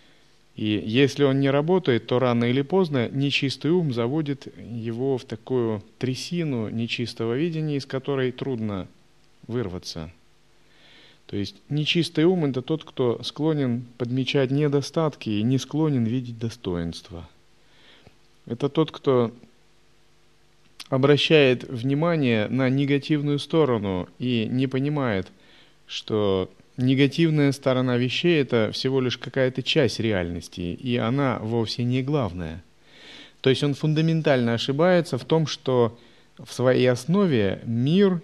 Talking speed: 120 wpm